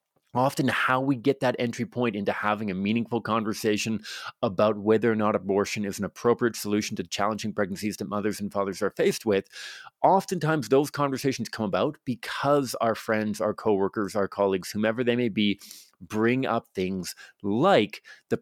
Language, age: English, 30-49